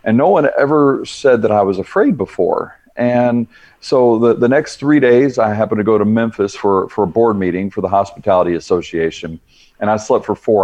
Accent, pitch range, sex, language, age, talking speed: American, 95-110 Hz, male, English, 40-59, 210 wpm